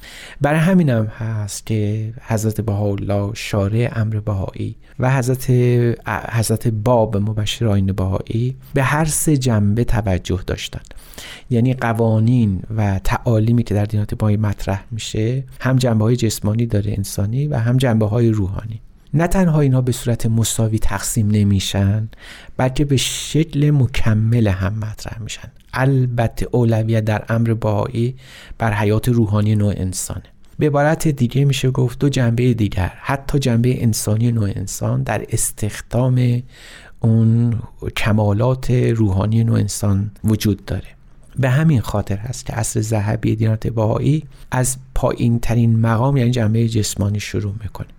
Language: Persian